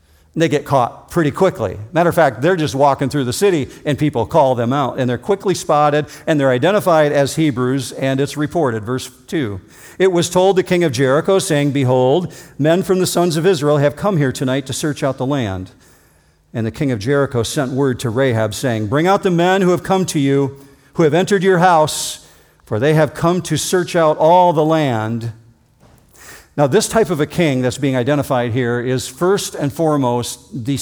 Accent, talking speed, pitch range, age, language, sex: American, 205 wpm, 125-170 Hz, 50-69, English, male